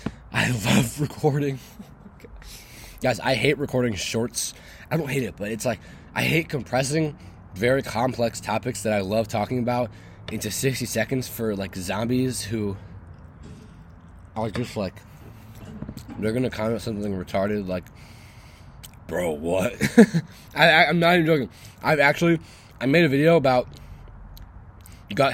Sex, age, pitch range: male, 20-39, 100-145 Hz